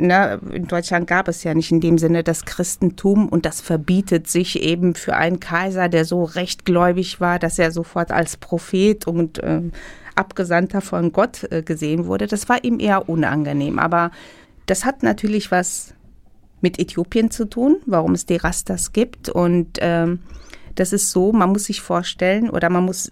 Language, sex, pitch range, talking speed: German, female, 170-205 Hz, 175 wpm